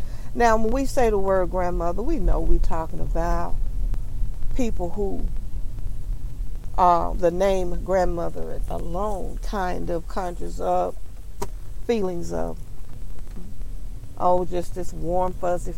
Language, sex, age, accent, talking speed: English, female, 50-69, American, 115 wpm